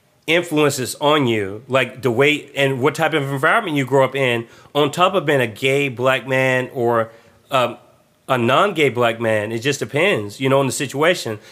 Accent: American